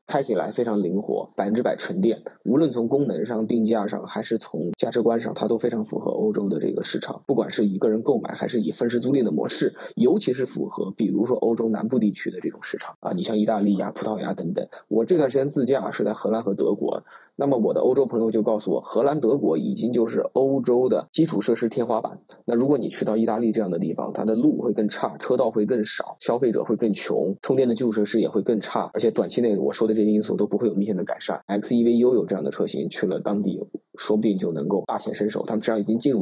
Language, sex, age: Chinese, male, 20-39